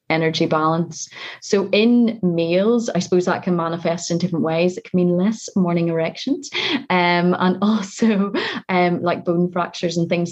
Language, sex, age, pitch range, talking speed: English, female, 30-49, 165-185 Hz, 165 wpm